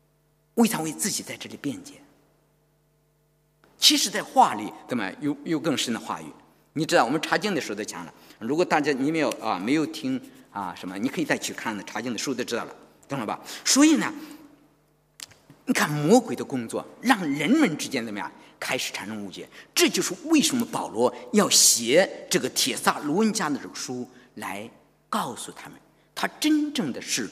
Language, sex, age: English, male, 50-69